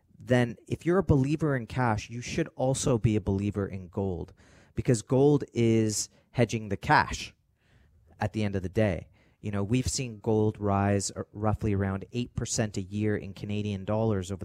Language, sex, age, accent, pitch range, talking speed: English, male, 30-49, American, 100-130 Hz, 175 wpm